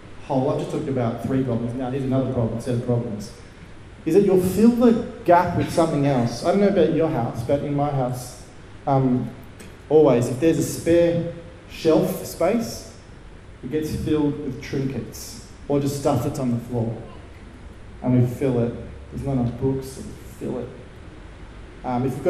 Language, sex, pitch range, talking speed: English, male, 115-155 Hz, 185 wpm